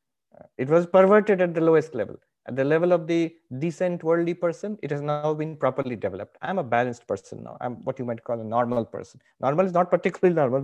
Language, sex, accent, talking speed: English, male, Indian, 230 wpm